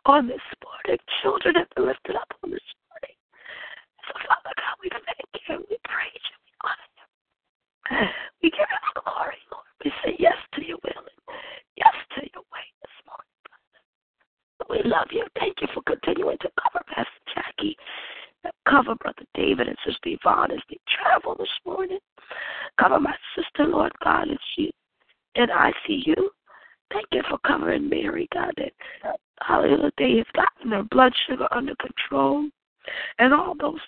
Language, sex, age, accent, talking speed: English, female, 20-39, American, 175 wpm